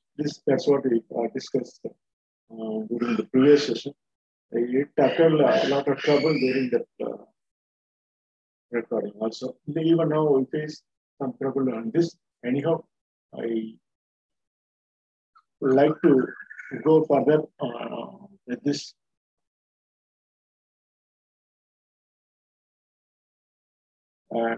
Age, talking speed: 50-69, 100 wpm